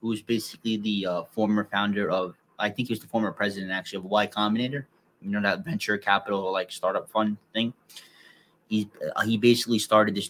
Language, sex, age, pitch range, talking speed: English, male, 20-39, 100-115 Hz, 185 wpm